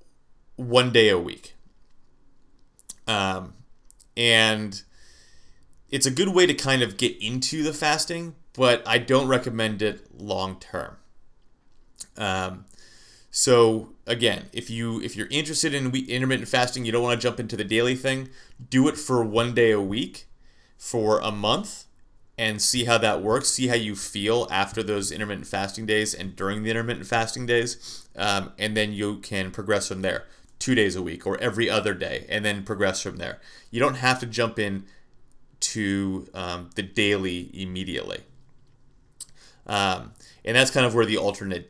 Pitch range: 95-125 Hz